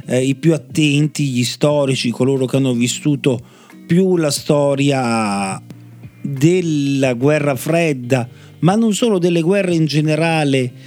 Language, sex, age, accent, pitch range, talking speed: Italian, male, 40-59, native, 135-170 Hz, 125 wpm